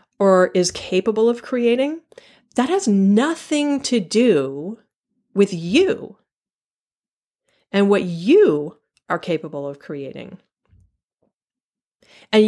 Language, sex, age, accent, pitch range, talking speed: English, female, 40-59, American, 185-280 Hz, 95 wpm